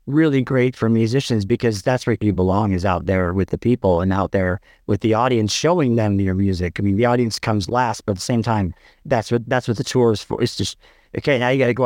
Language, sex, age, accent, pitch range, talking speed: English, male, 40-59, American, 110-135 Hz, 260 wpm